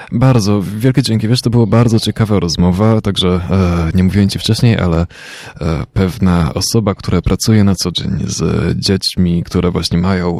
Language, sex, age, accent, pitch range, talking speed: Polish, male, 20-39, native, 90-110 Hz, 165 wpm